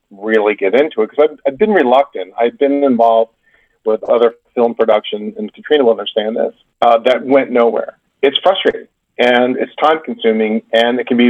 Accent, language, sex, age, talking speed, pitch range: American, English, male, 40-59, 180 wpm, 115-150 Hz